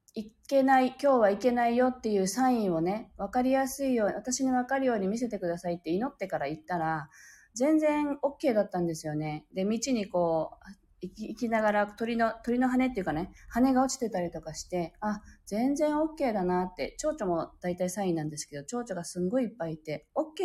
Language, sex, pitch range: Japanese, female, 165-235 Hz